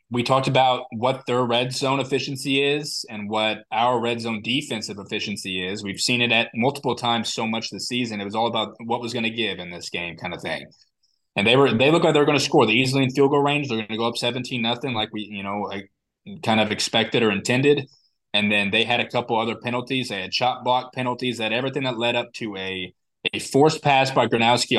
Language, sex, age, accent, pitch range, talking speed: English, male, 20-39, American, 110-130 Hz, 240 wpm